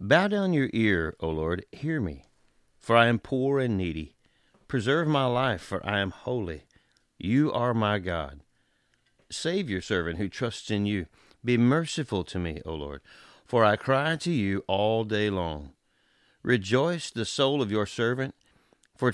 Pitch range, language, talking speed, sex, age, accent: 90-125 Hz, English, 165 wpm, male, 40-59, American